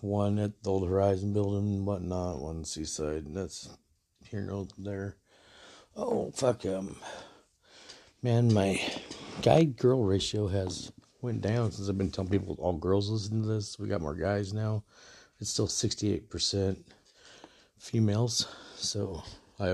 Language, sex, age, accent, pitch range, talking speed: English, male, 50-69, American, 100-110 Hz, 145 wpm